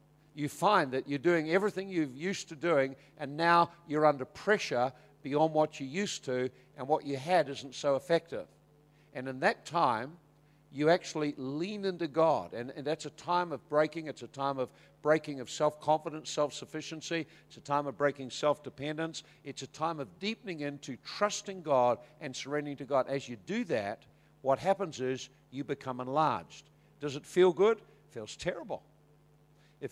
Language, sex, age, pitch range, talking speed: English, male, 60-79, 135-160 Hz, 175 wpm